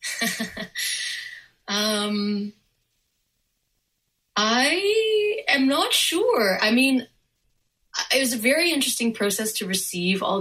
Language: English